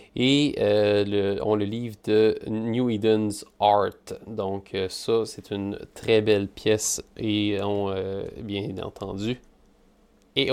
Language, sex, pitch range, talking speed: French, male, 100-120 Hz, 125 wpm